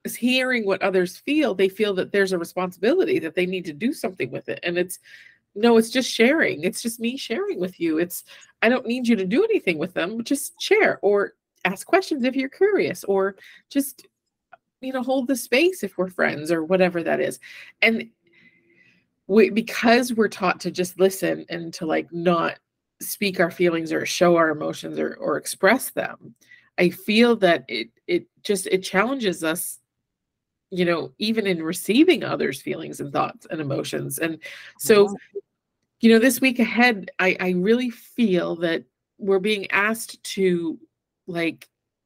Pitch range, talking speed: 185-250 Hz, 175 wpm